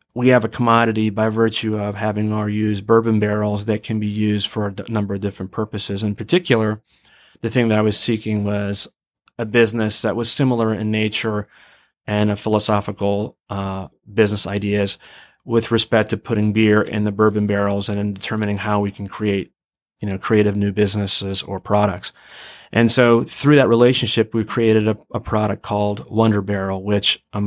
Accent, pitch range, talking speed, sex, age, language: American, 100-115 Hz, 180 wpm, male, 30-49, English